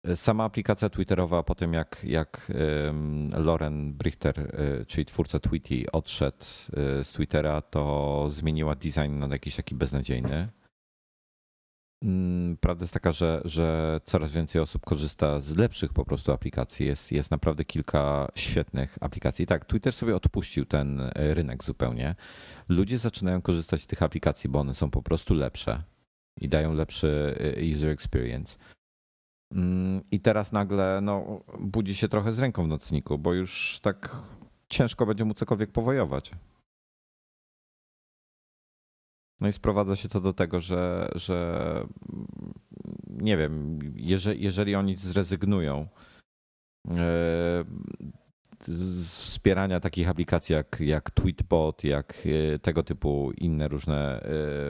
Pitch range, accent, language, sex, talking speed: 75-95 Hz, native, Polish, male, 120 wpm